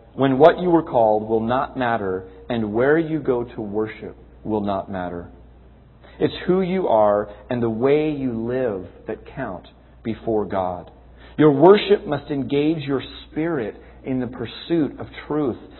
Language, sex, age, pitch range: English, male, 40-59, 105-160 Hz